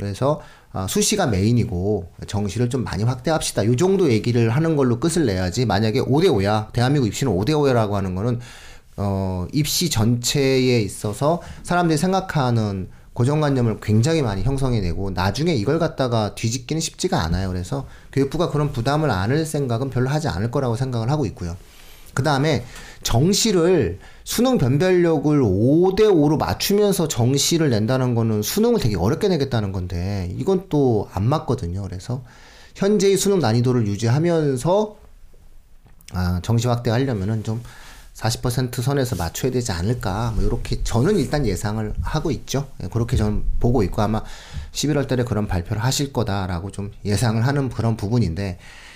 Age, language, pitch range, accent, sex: 40-59, Korean, 105-145 Hz, native, male